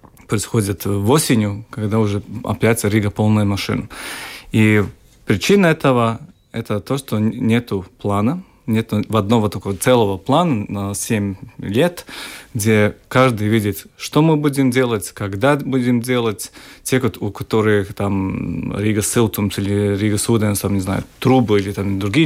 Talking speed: 140 wpm